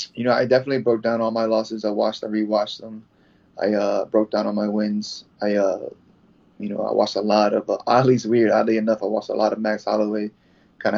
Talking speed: 235 wpm